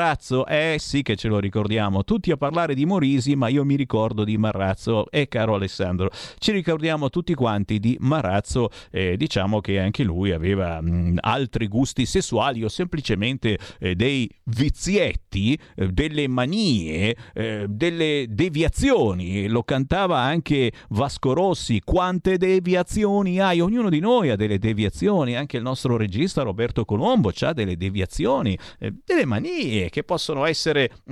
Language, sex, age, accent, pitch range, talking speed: Italian, male, 50-69, native, 105-160 Hz, 150 wpm